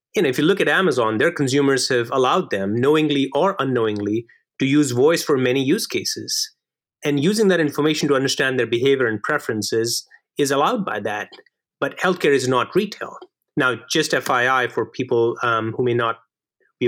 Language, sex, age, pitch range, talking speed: English, male, 30-49, 125-170 Hz, 180 wpm